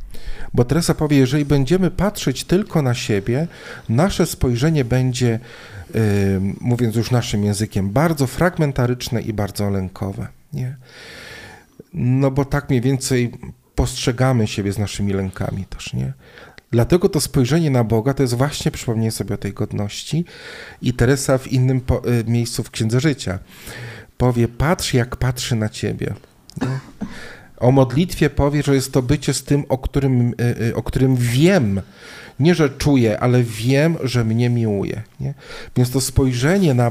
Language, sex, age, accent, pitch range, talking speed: Polish, male, 40-59, native, 115-140 Hz, 145 wpm